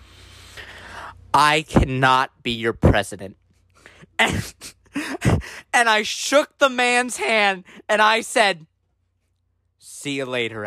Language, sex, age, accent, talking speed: English, male, 30-49, American, 100 wpm